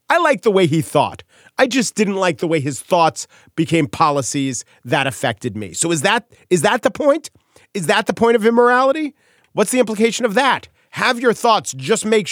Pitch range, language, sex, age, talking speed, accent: 145-200 Hz, English, male, 40-59, 205 wpm, American